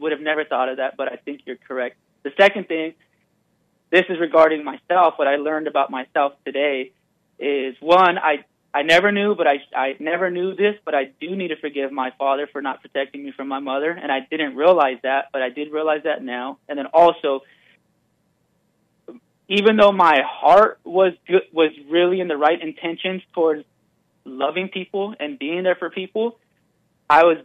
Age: 20-39